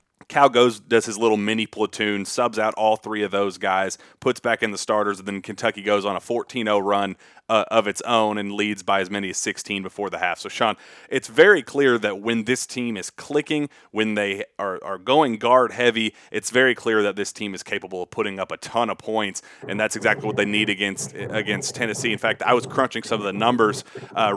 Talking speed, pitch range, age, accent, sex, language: 220 wpm, 100-120 Hz, 30-49, American, male, English